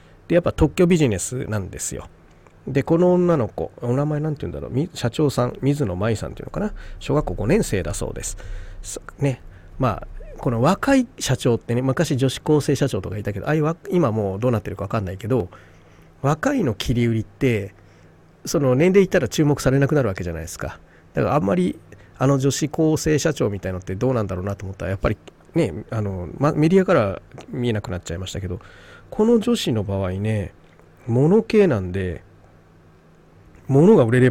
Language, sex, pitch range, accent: Japanese, male, 95-145 Hz, native